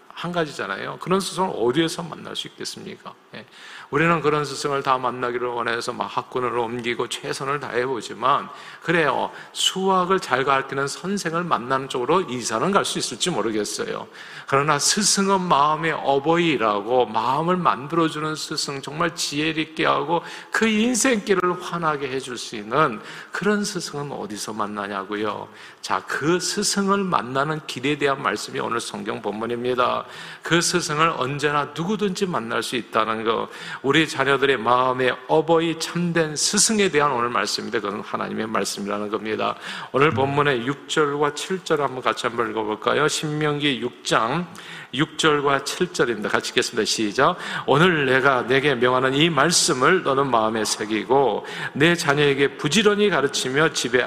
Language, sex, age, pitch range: Korean, male, 50-69, 125-170 Hz